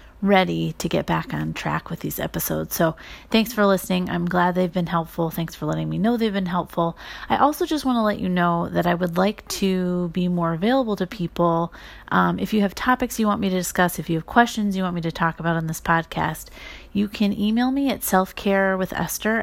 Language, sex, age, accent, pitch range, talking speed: English, female, 30-49, American, 165-205 Hz, 225 wpm